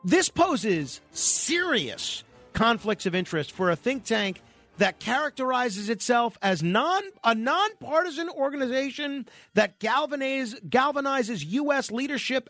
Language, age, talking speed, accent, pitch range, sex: English, 40-59, 110 wpm, American, 175-255 Hz, male